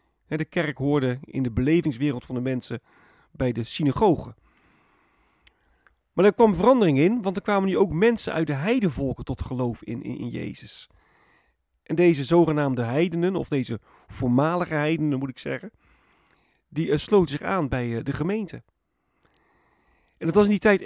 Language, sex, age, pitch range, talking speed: Dutch, male, 40-59, 135-185 Hz, 165 wpm